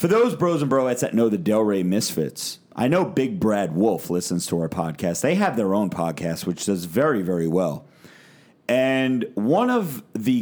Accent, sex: American, male